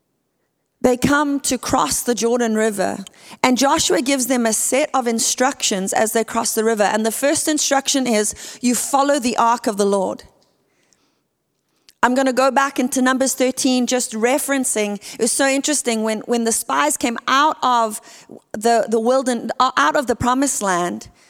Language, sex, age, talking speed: English, female, 30-49, 170 wpm